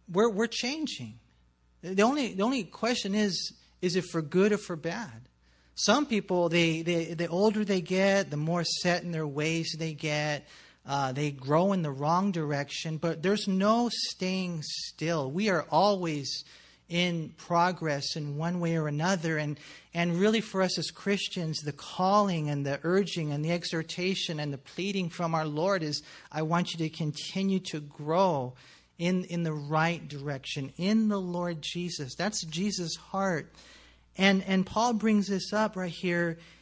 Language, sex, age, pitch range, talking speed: English, male, 40-59, 150-195 Hz, 170 wpm